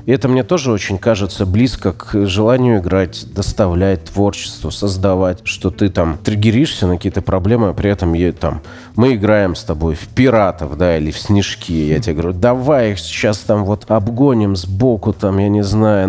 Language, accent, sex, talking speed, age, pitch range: Russian, native, male, 185 wpm, 30-49, 85-110 Hz